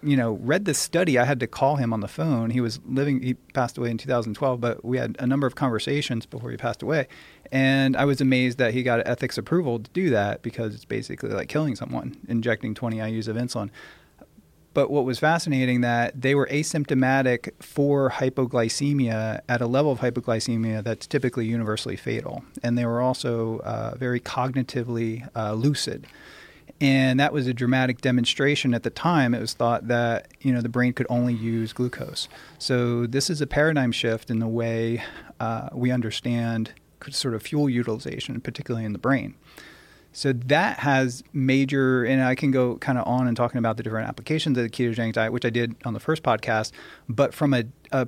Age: 40-59